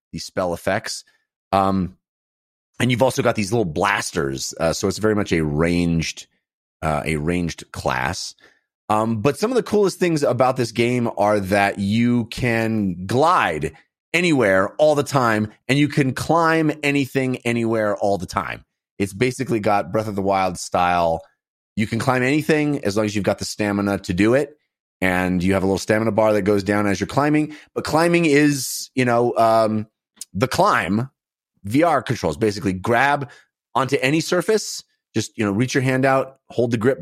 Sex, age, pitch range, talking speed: male, 30-49, 100-135 Hz, 180 wpm